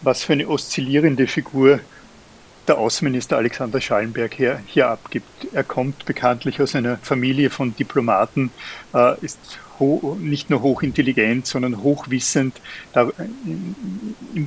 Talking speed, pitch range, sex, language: 110 wpm, 125-145 Hz, male, German